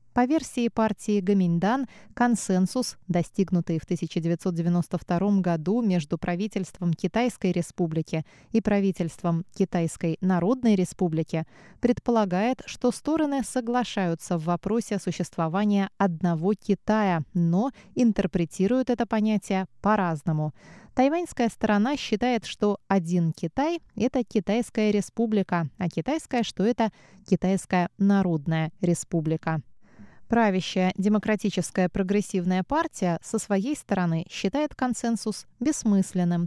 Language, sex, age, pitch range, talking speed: Russian, female, 20-39, 175-225 Hz, 95 wpm